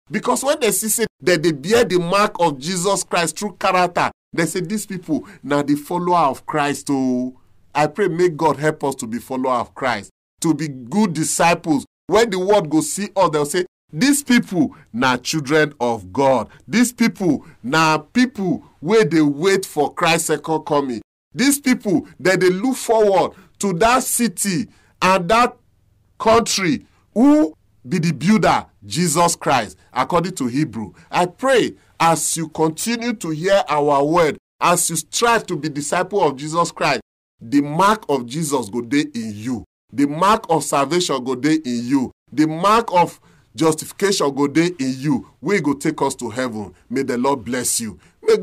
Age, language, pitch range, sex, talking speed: 40-59, English, 140-200 Hz, male, 175 wpm